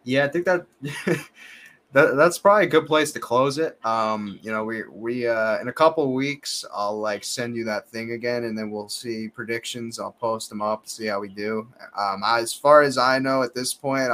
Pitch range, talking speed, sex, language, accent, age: 105-125 Hz, 225 wpm, male, English, American, 20-39